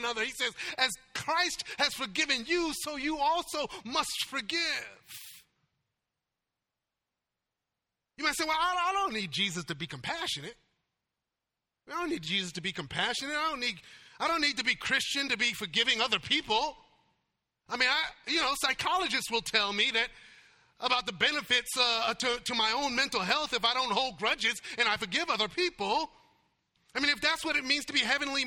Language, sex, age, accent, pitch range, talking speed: English, male, 30-49, American, 225-295 Hz, 175 wpm